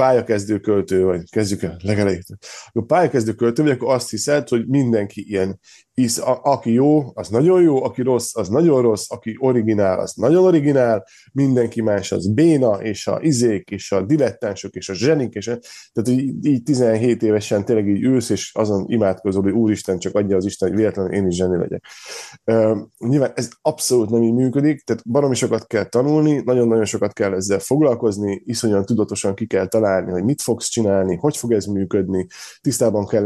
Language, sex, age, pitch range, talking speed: Hungarian, male, 20-39, 100-130 Hz, 175 wpm